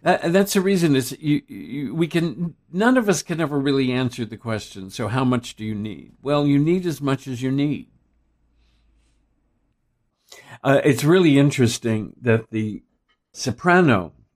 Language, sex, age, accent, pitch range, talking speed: English, male, 60-79, American, 115-150 Hz, 165 wpm